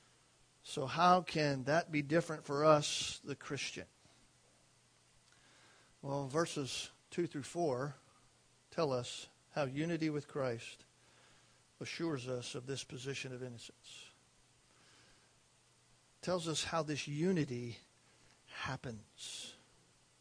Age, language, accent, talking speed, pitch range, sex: 50-69, English, American, 100 wpm, 135-175 Hz, male